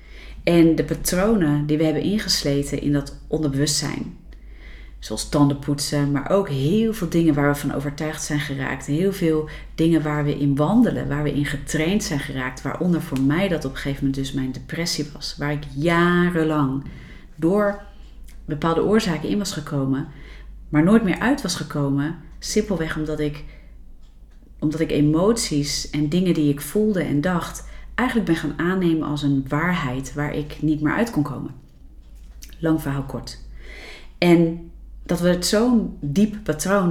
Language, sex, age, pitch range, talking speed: Dutch, female, 40-59, 140-170 Hz, 165 wpm